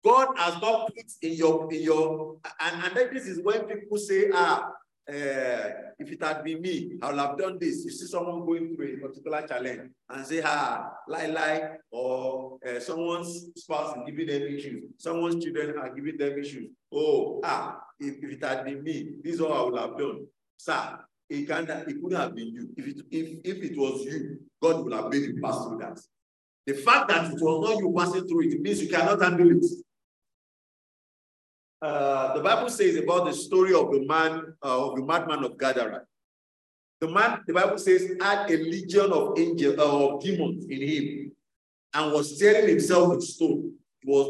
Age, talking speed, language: 50-69, 200 wpm, English